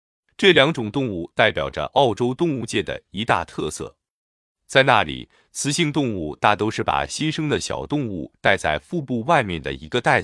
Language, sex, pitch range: Chinese, male, 90-145 Hz